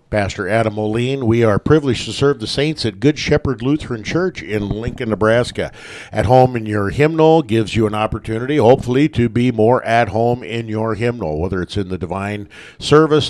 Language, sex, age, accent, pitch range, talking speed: English, male, 50-69, American, 100-125 Hz, 190 wpm